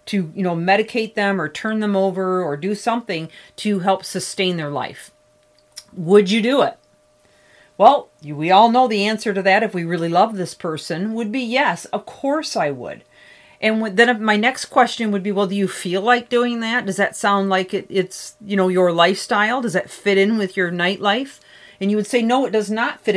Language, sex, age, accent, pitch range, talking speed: English, female, 40-59, American, 185-240 Hz, 210 wpm